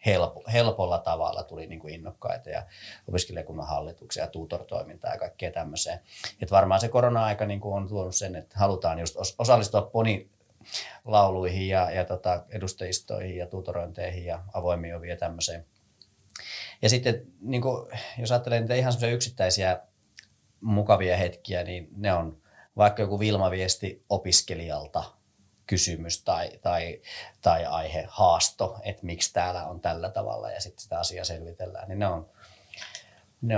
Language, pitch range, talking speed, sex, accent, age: Finnish, 90-110 Hz, 125 wpm, male, native, 30-49